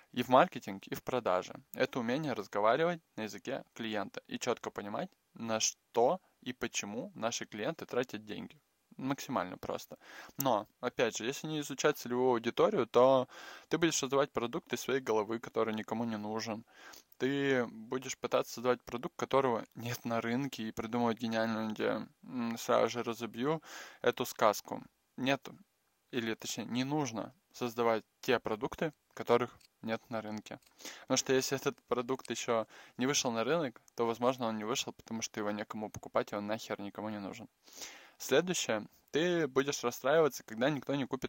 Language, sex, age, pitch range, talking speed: Russian, male, 20-39, 110-135 Hz, 155 wpm